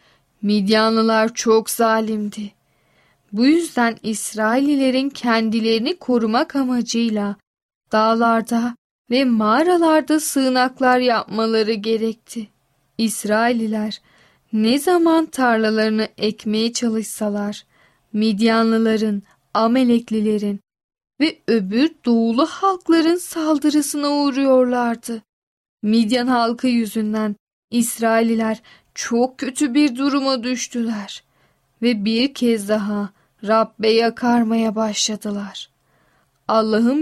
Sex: female